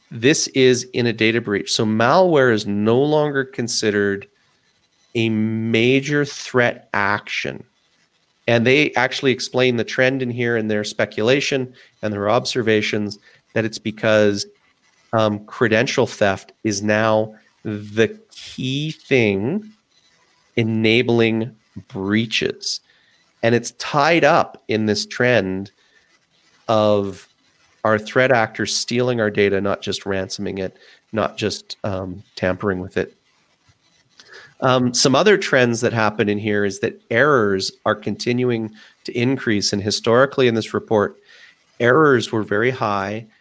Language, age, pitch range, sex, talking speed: English, 30-49, 105-125 Hz, male, 125 wpm